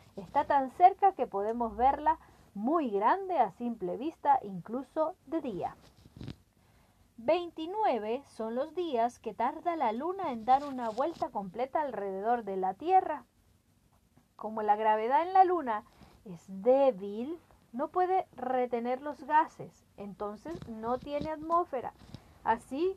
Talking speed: 130 wpm